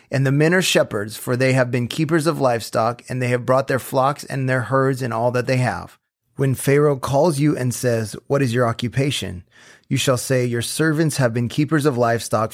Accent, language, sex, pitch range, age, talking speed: American, English, male, 120-145 Hz, 30-49, 220 wpm